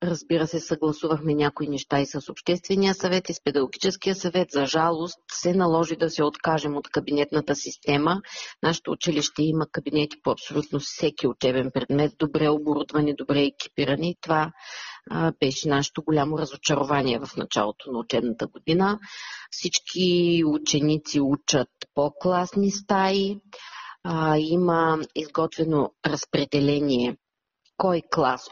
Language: Bulgarian